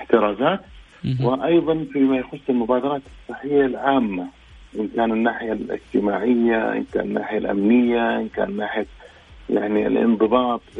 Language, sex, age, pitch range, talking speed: Arabic, male, 40-59, 105-125 Hz, 110 wpm